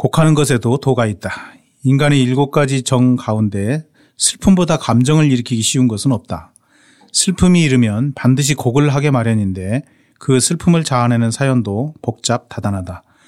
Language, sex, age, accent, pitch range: Korean, male, 40-59, native, 115-145 Hz